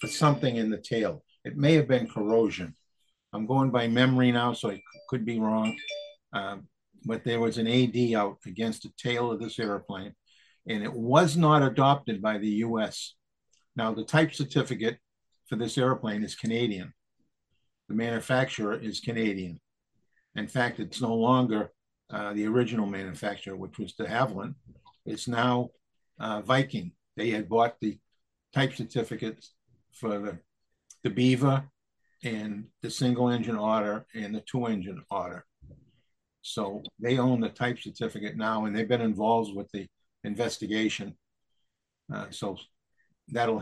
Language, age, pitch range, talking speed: English, 50-69, 105-125 Hz, 150 wpm